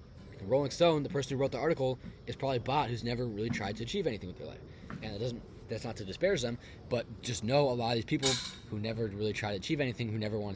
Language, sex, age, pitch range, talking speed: English, male, 20-39, 105-125 Hz, 265 wpm